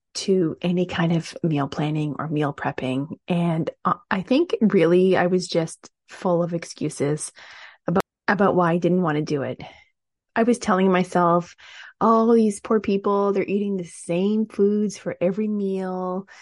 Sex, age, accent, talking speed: female, 20-39, American, 160 wpm